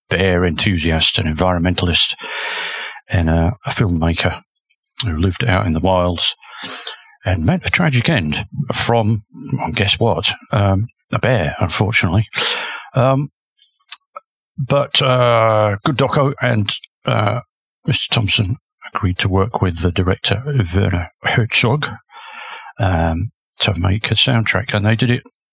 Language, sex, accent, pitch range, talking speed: English, male, British, 95-120 Hz, 125 wpm